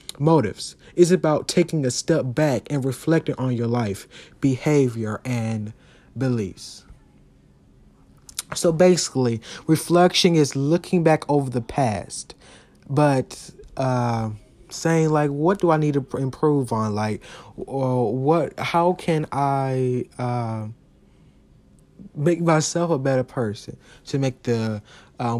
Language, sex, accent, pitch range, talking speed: English, male, American, 120-155 Hz, 120 wpm